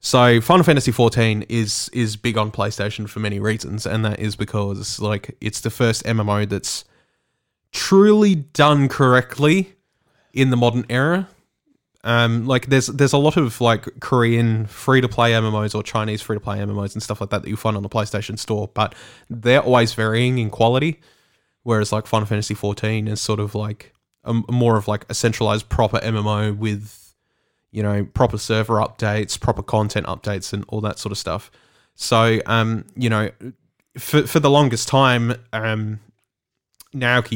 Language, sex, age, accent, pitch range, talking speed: English, male, 20-39, Australian, 105-125 Hz, 170 wpm